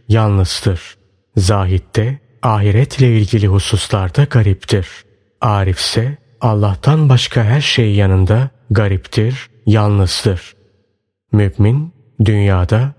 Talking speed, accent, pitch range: 75 wpm, native, 100-125 Hz